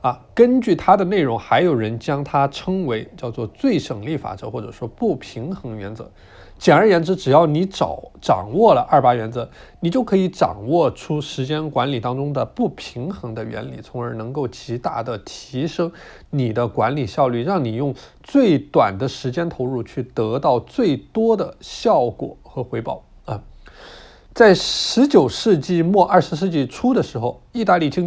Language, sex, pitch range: Chinese, male, 120-170 Hz